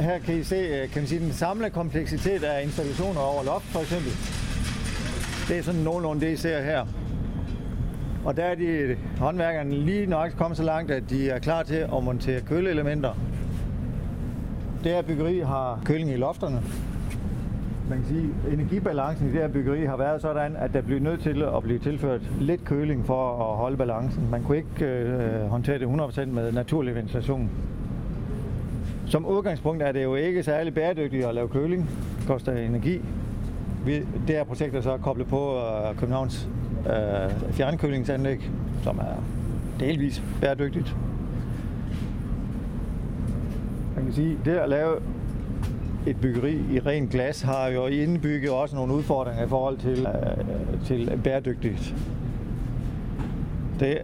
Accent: native